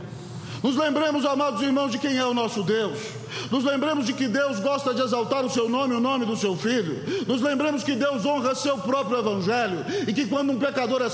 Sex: male